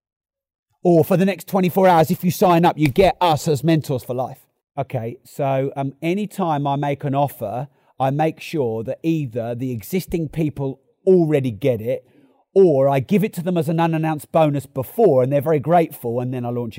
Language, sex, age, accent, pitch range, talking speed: English, male, 40-59, British, 120-155 Hz, 195 wpm